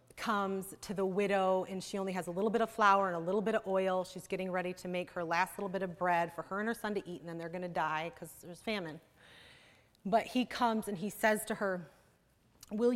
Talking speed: 255 wpm